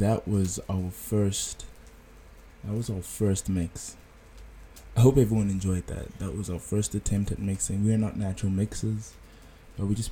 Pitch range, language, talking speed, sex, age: 90-100 Hz, English, 170 wpm, male, 20-39